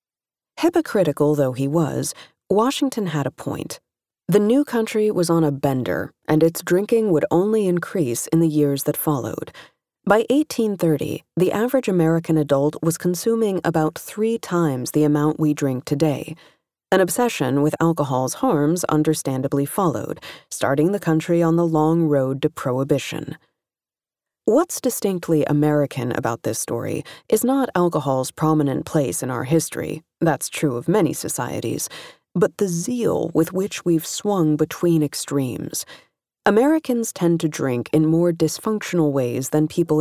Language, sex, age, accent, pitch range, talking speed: English, female, 30-49, American, 150-195 Hz, 145 wpm